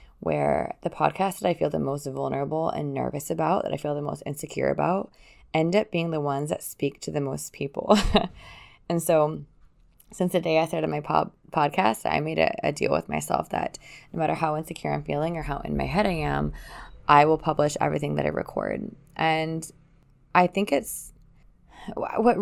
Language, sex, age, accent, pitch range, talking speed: English, female, 20-39, American, 130-180 Hz, 195 wpm